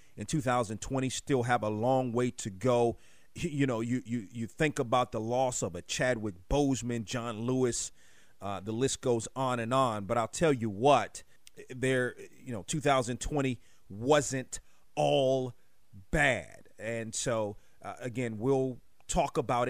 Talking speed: 150 wpm